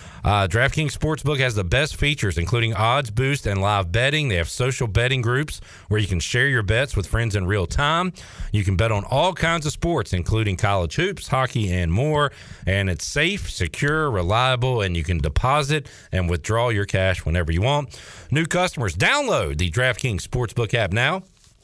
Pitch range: 95-130 Hz